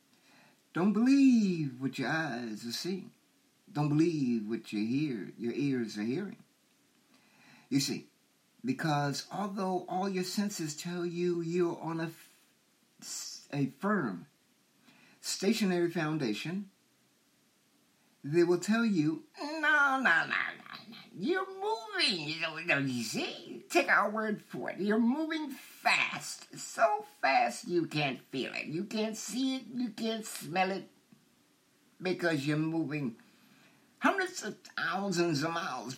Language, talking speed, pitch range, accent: English, 120 wpm, 165-255 Hz, American